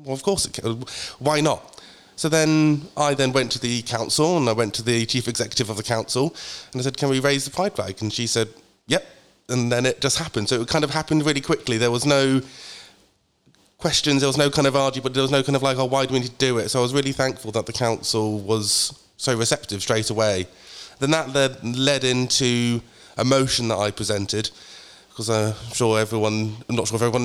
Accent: British